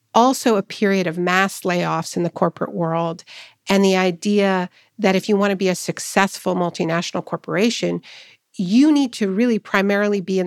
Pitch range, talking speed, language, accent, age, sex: 180-215 Hz, 170 wpm, English, American, 50-69, female